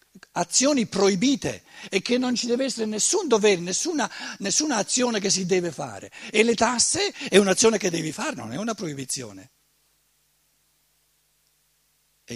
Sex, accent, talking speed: male, native, 145 wpm